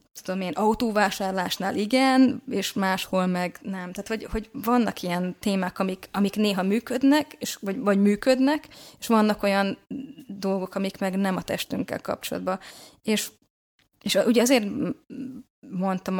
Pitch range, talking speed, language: 185-220 Hz, 135 wpm, Hungarian